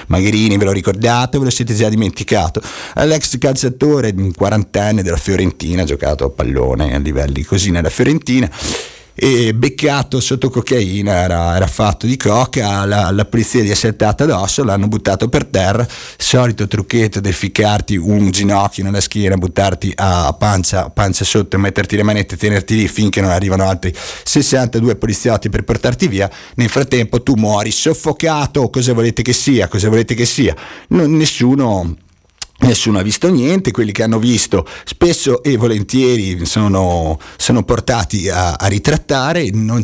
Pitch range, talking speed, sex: 95-120 Hz, 155 wpm, male